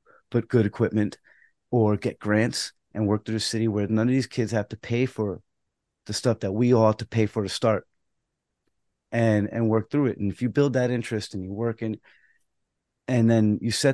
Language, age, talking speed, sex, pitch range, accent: English, 30-49, 215 wpm, male, 105-120 Hz, American